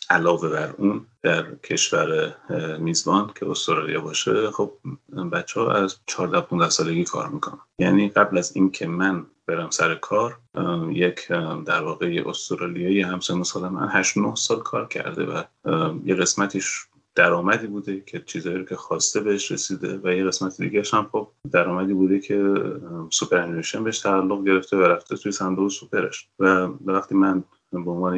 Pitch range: 90-100 Hz